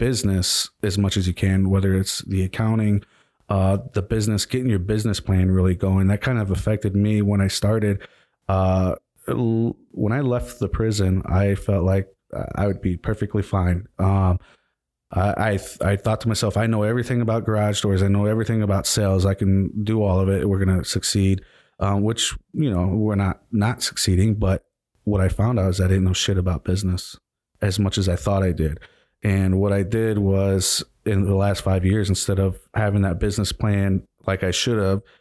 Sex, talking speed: male, 200 wpm